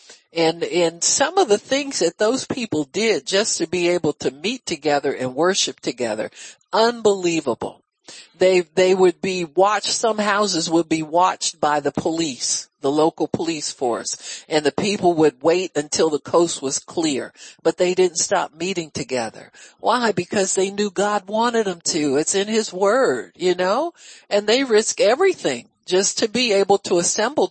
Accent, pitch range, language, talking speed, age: American, 170-240 Hz, English, 170 wpm, 60-79